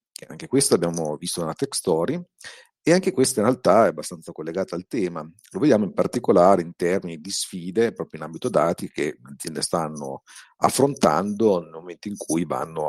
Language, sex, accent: Italian, male, native